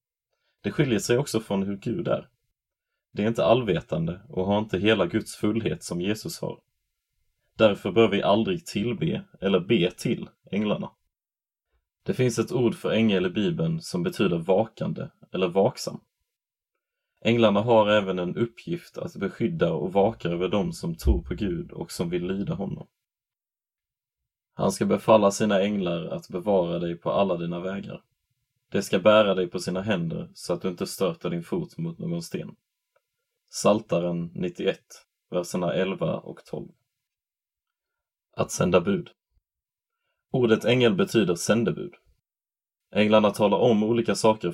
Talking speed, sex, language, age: 150 wpm, male, Swedish, 30-49